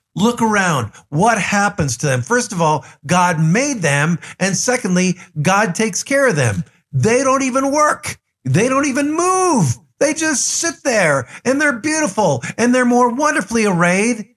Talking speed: 165 wpm